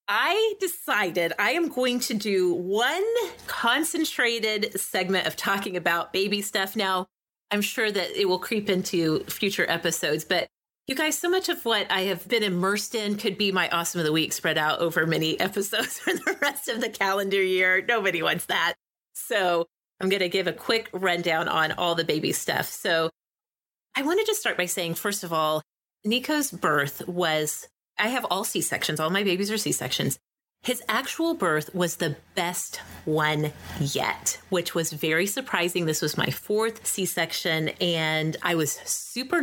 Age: 30-49